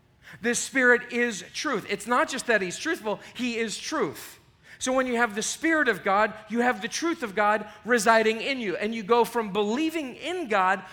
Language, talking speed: English, 205 wpm